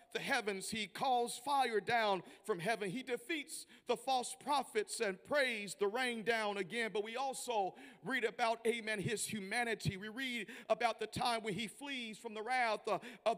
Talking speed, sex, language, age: 180 wpm, male, English, 50-69